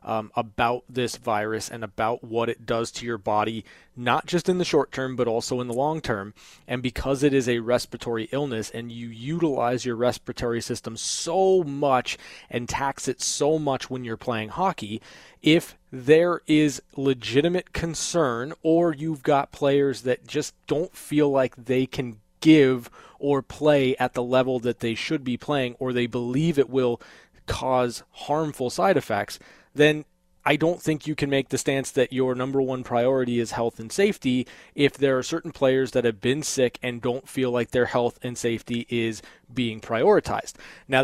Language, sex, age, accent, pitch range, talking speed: English, male, 20-39, American, 120-145 Hz, 180 wpm